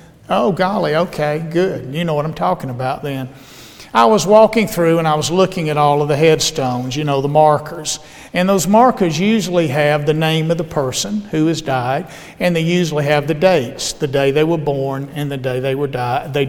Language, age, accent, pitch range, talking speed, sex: English, 50-69, American, 140-175 Hz, 210 wpm, male